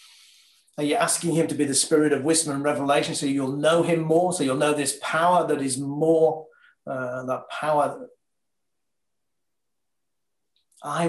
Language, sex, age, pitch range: English, male, 40-59, 130-160 Hz